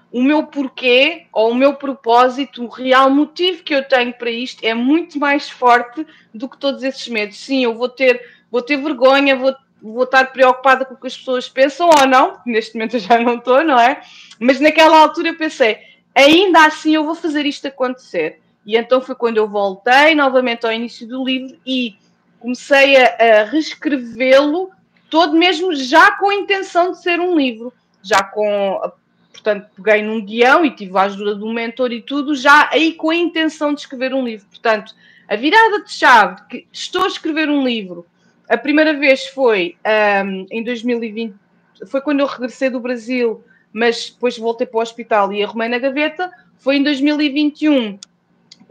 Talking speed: 180 wpm